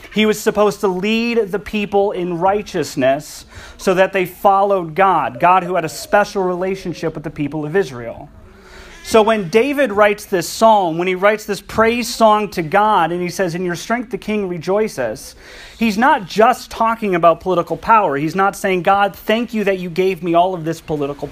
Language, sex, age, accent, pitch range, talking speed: English, male, 30-49, American, 170-210 Hz, 195 wpm